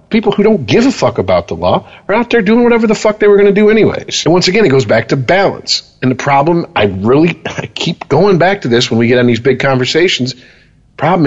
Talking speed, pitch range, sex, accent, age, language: 255 wpm, 105-160 Hz, male, American, 40-59, English